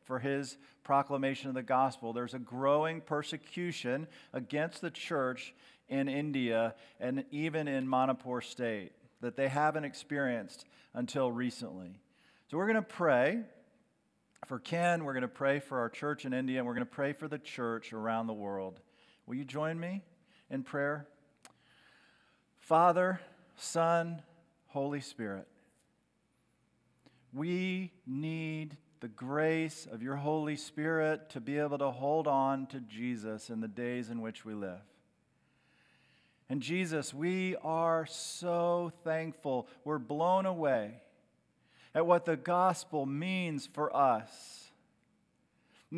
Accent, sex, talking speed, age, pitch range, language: American, male, 135 wpm, 50-69, 130-165 Hz, English